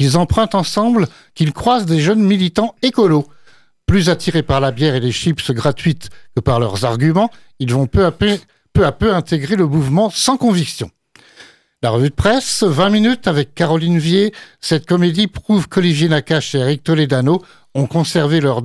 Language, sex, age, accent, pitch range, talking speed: French, male, 60-79, French, 145-195 Hz, 175 wpm